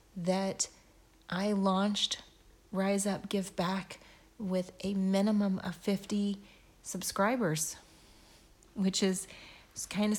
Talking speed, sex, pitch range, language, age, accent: 100 wpm, female, 185-205 Hz, English, 30-49, American